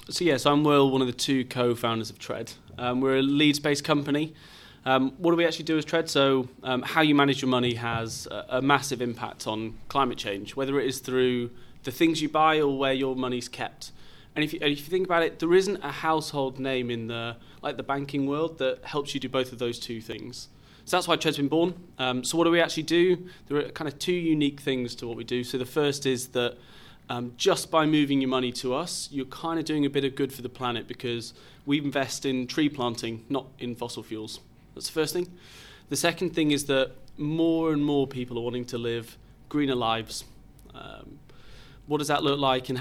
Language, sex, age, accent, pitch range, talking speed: English, male, 30-49, British, 120-145 Hz, 235 wpm